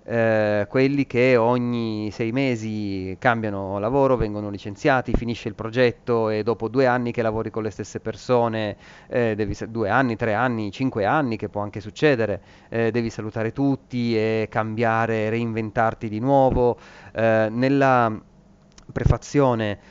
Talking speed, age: 140 wpm, 30-49